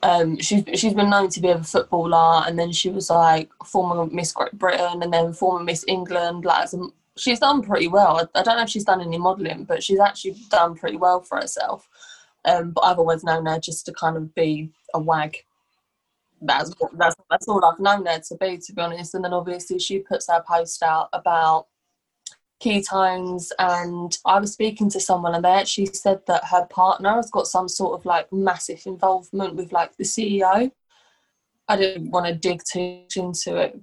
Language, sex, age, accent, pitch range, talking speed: English, female, 20-39, British, 170-190 Hz, 200 wpm